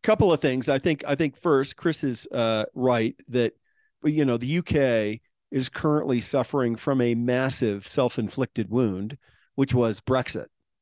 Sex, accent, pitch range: male, American, 115-140 Hz